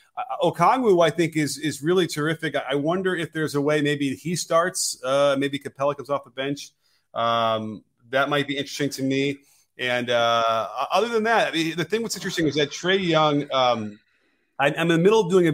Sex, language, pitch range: male, English, 130-165 Hz